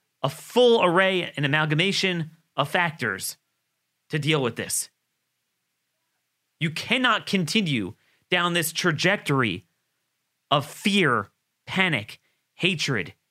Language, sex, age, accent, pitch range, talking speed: English, male, 30-49, American, 125-165 Hz, 95 wpm